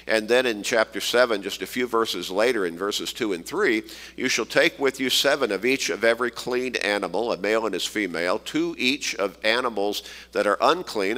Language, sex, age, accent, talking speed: English, male, 50-69, American, 210 wpm